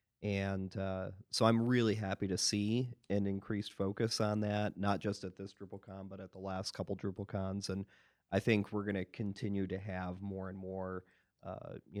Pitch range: 95-105 Hz